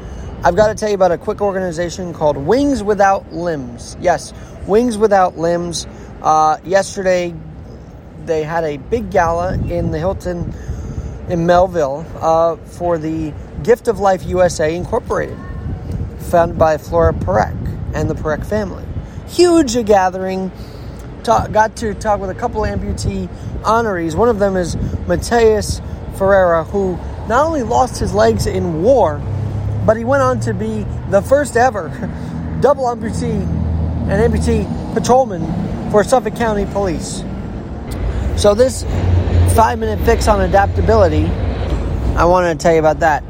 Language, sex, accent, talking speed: English, male, American, 140 wpm